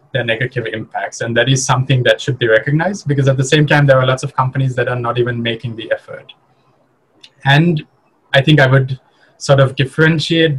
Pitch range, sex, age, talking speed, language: 120-140 Hz, male, 20-39, 200 wpm, English